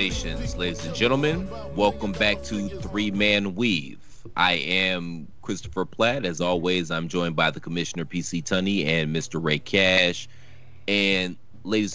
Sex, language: male, English